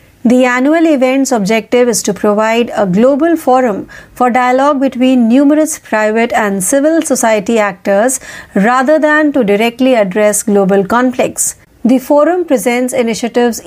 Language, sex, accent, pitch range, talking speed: Marathi, female, native, 215-265 Hz, 130 wpm